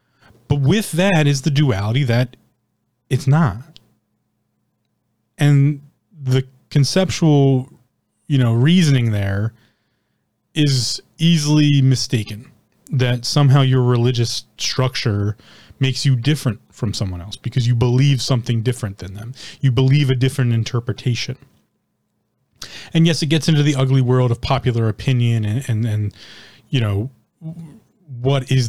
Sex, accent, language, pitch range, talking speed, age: male, American, English, 115-145 Hz, 130 wpm, 30-49